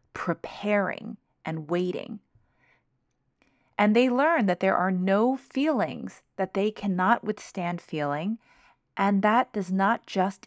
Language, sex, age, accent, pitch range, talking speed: English, female, 30-49, American, 160-210 Hz, 120 wpm